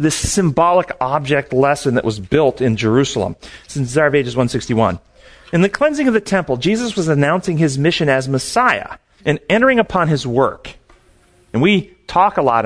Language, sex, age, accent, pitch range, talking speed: English, male, 40-59, American, 135-190 Hz, 175 wpm